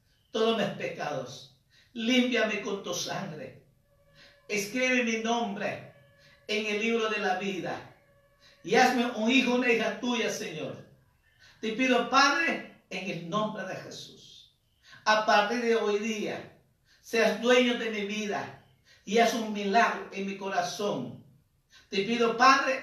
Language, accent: Spanish, American